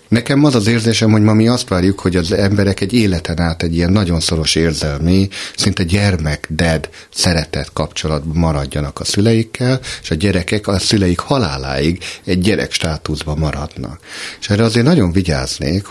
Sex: male